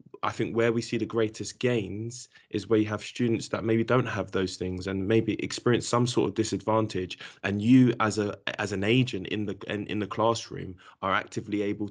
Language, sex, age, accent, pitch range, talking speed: English, male, 20-39, British, 105-125 Hz, 210 wpm